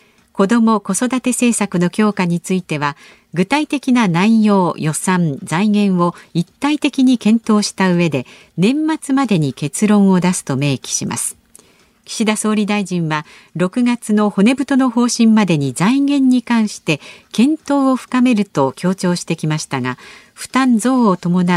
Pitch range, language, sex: 175-235 Hz, Japanese, female